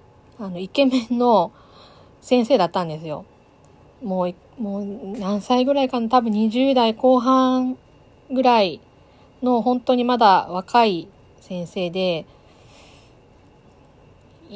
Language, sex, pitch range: Japanese, female, 165-225 Hz